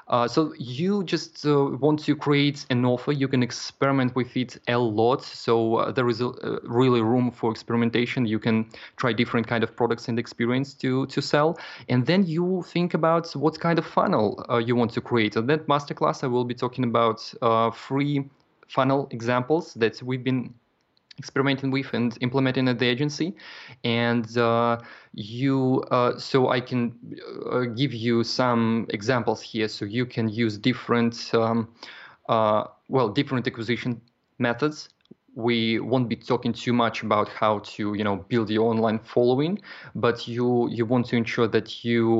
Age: 20-39